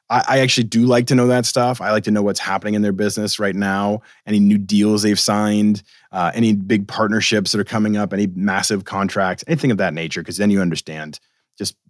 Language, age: English, 30-49